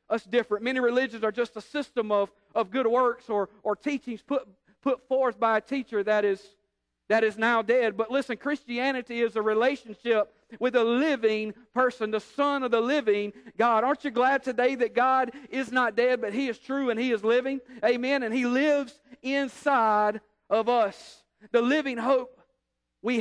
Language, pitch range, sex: English, 200-245 Hz, male